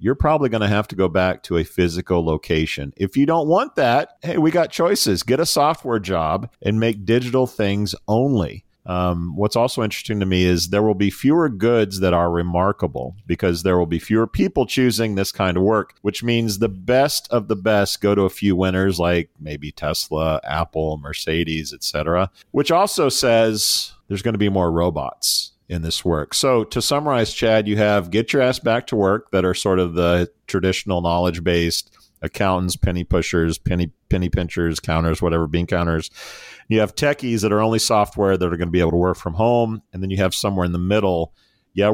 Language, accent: English, American